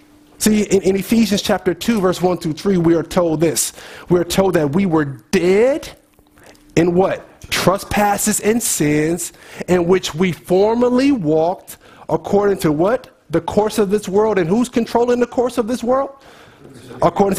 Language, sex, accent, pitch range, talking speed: English, male, American, 180-230 Hz, 165 wpm